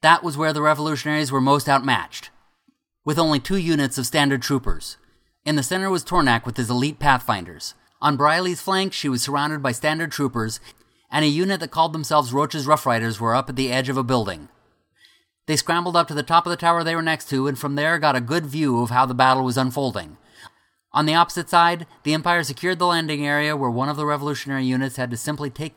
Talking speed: 225 wpm